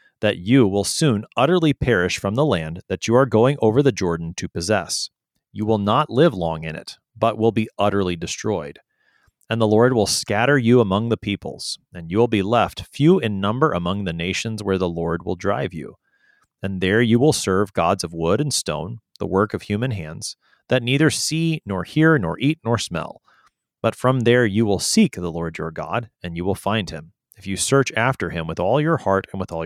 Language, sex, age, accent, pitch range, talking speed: English, male, 30-49, American, 95-130 Hz, 215 wpm